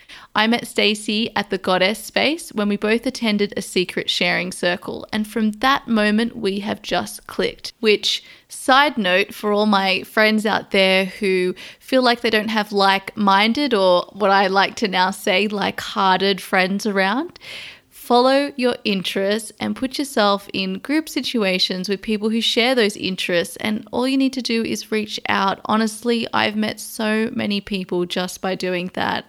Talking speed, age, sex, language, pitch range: 170 wpm, 20-39, female, English, 195-235 Hz